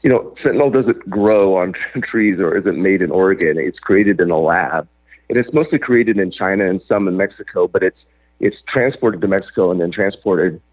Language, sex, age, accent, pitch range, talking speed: English, male, 40-59, American, 95-125 Hz, 200 wpm